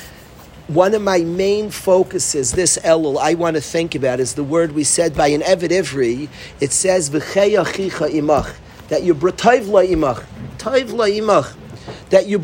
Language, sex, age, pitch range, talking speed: English, male, 50-69, 165-220 Hz, 140 wpm